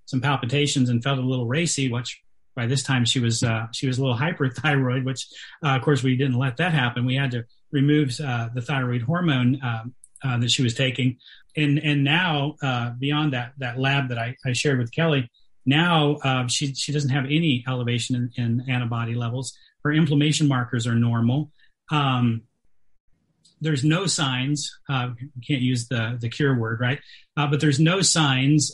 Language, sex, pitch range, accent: English, male, 120-145 Hz, American